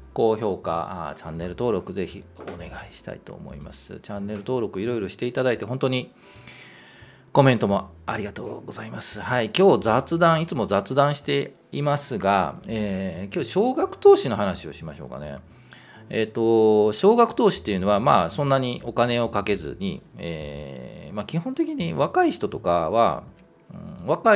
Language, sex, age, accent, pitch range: Japanese, male, 40-59, native, 95-145 Hz